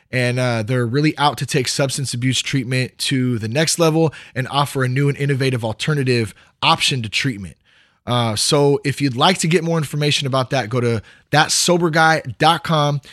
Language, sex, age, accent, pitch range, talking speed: English, male, 20-39, American, 115-155 Hz, 175 wpm